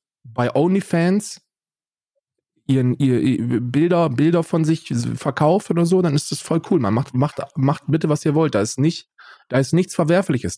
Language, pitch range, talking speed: German, 135-205 Hz, 180 wpm